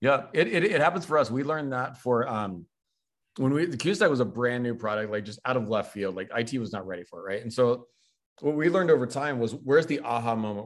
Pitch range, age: 115-150 Hz, 40-59